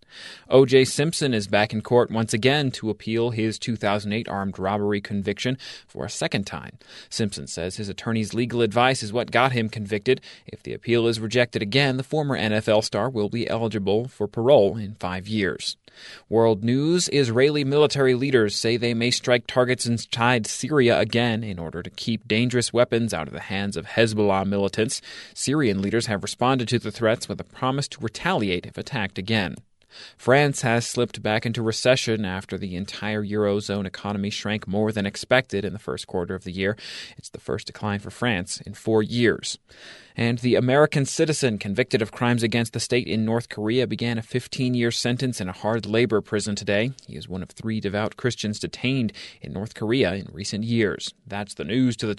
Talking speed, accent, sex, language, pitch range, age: 185 wpm, American, male, English, 105-125 Hz, 30-49